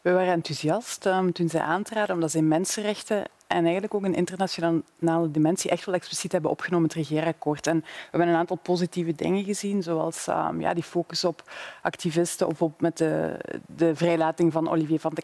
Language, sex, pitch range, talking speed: Dutch, female, 160-180 Hz, 195 wpm